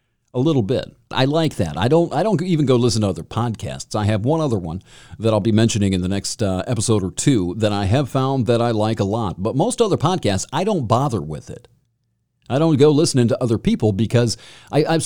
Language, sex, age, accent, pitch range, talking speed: English, male, 50-69, American, 100-130 Hz, 235 wpm